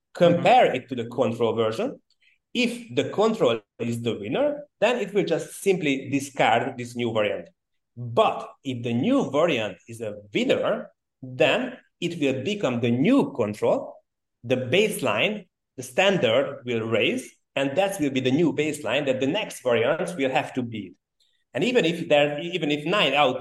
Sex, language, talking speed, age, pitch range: male, English, 165 wpm, 30-49, 115-145 Hz